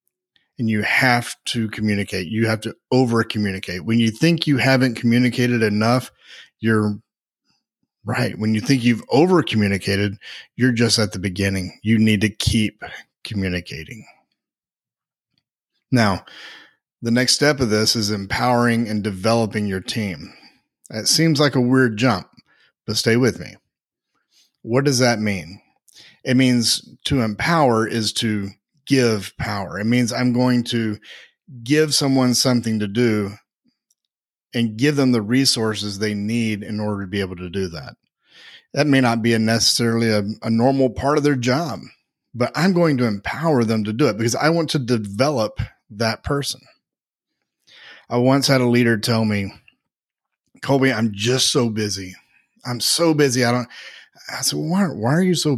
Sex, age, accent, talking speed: male, 30-49, American, 160 wpm